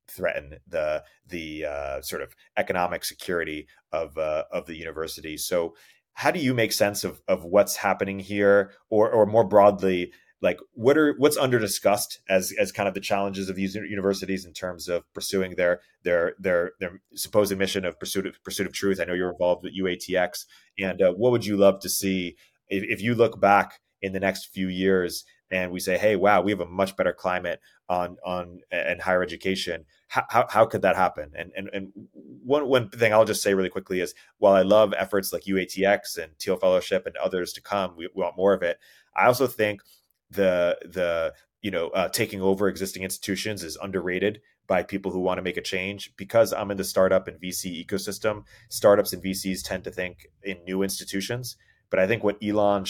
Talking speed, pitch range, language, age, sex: 205 wpm, 90-105 Hz, English, 30-49, male